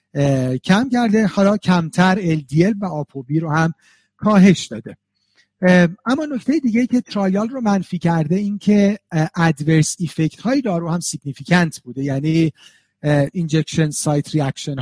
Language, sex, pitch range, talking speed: Persian, male, 145-190 Hz, 135 wpm